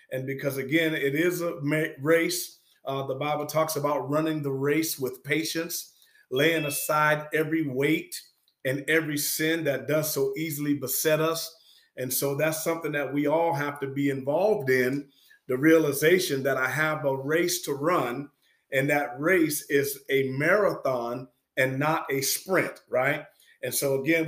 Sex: male